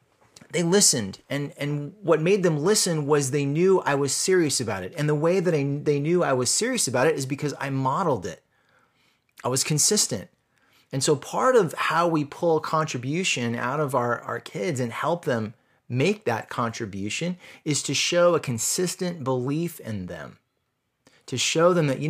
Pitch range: 125-165 Hz